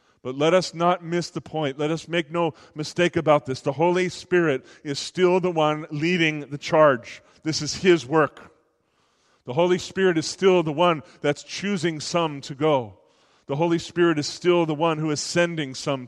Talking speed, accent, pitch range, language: 190 wpm, American, 145-175 Hz, English